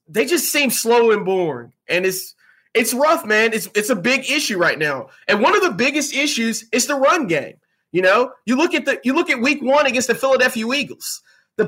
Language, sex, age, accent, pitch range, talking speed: English, male, 20-39, American, 225-285 Hz, 225 wpm